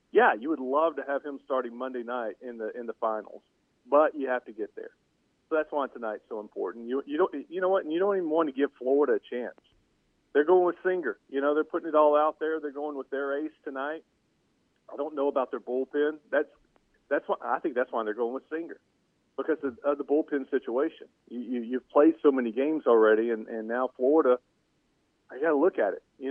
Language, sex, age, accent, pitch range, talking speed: English, male, 40-59, American, 120-155 Hz, 235 wpm